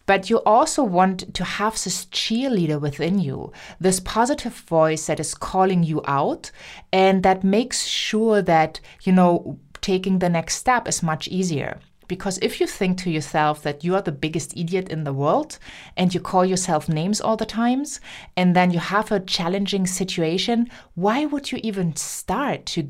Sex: female